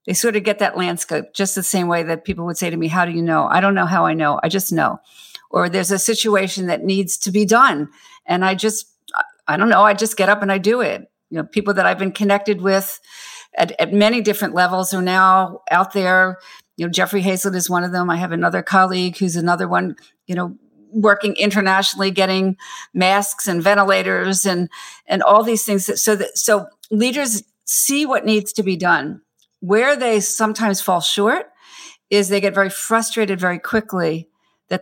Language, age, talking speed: English, 50-69, 205 wpm